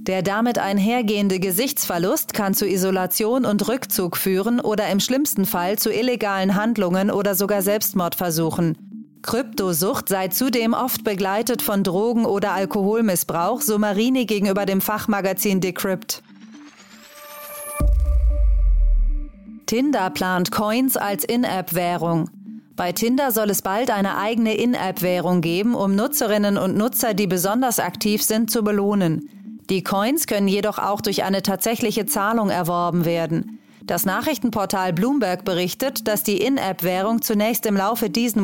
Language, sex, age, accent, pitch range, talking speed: German, female, 40-59, German, 185-225 Hz, 125 wpm